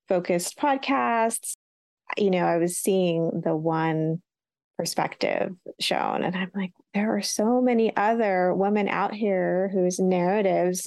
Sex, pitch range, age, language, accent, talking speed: female, 180-220 Hz, 30-49, English, American, 130 wpm